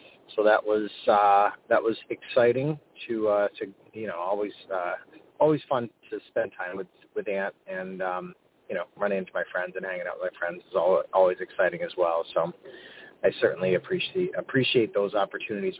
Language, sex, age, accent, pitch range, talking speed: English, male, 30-49, American, 95-125 Hz, 185 wpm